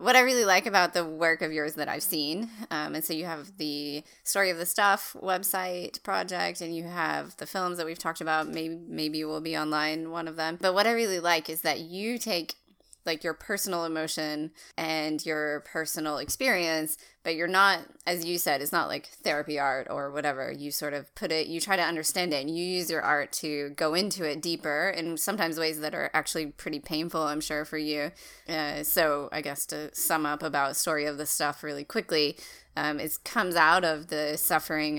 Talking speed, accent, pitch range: 215 wpm, American, 150-175 Hz